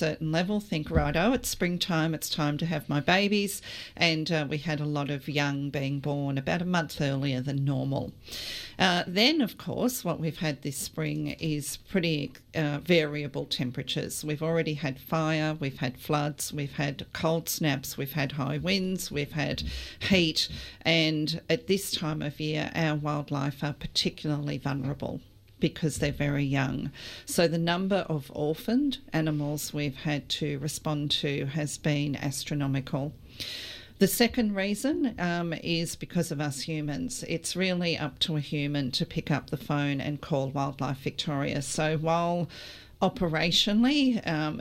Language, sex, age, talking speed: English, female, 40-59, 160 wpm